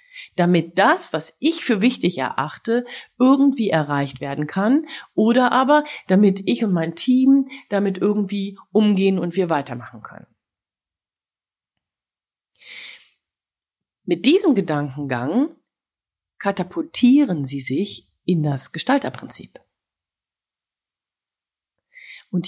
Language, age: German, 30-49